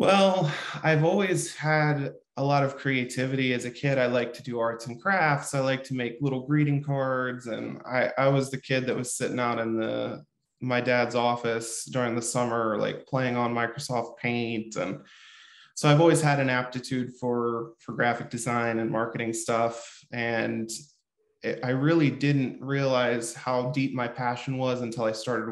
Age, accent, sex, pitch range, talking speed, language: 20-39, American, male, 115-135 Hz, 180 wpm, English